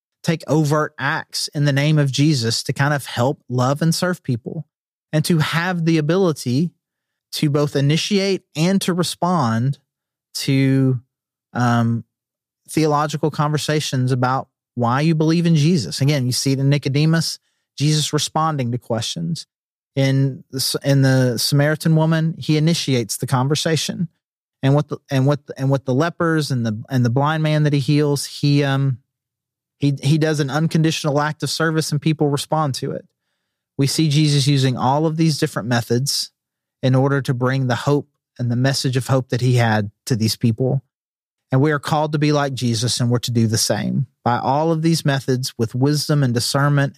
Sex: male